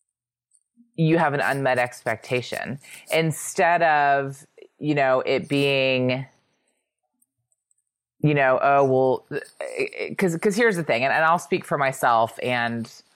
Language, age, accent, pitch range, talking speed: English, 30-49, American, 125-150 Hz, 120 wpm